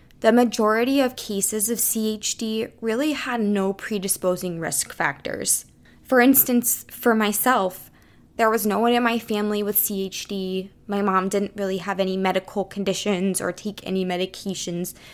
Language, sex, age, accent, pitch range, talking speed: English, female, 20-39, American, 185-230 Hz, 145 wpm